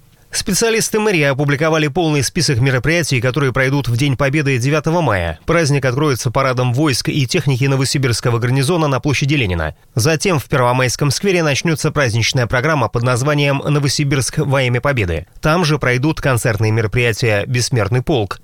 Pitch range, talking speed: 125-155 Hz, 145 wpm